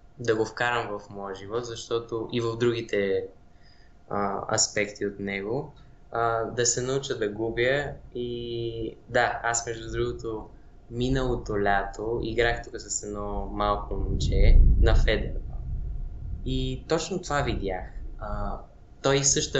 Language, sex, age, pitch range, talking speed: Bulgarian, male, 20-39, 110-135 Hz, 130 wpm